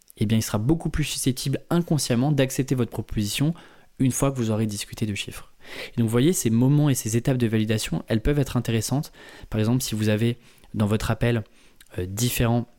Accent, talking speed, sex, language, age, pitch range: French, 205 wpm, male, French, 20-39, 105-135 Hz